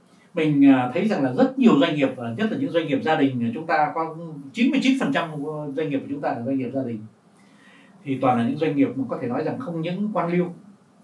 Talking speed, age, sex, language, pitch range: 255 wpm, 60-79, male, Vietnamese, 140-210 Hz